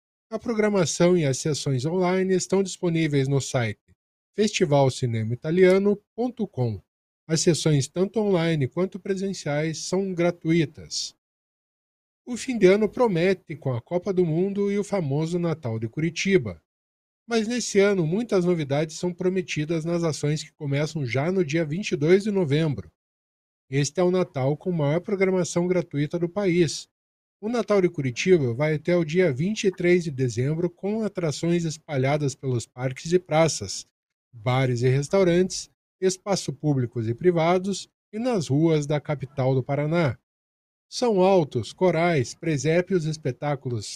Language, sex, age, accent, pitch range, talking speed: Portuguese, male, 20-39, Brazilian, 140-185 Hz, 135 wpm